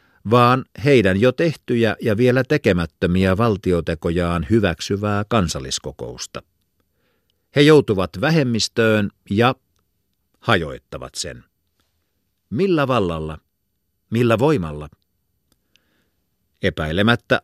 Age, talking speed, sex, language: 50-69, 70 wpm, male, Finnish